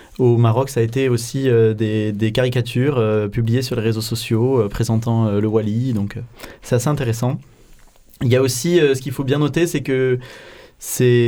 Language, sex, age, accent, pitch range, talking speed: French, male, 20-39, French, 115-140 Hz, 205 wpm